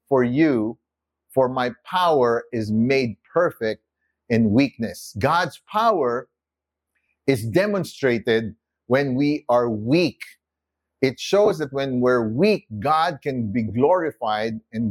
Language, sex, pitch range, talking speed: English, male, 100-155 Hz, 115 wpm